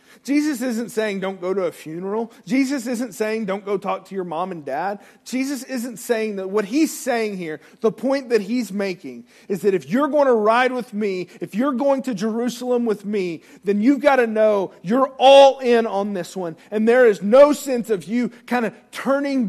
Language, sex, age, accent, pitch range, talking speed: English, male, 40-59, American, 180-245 Hz, 210 wpm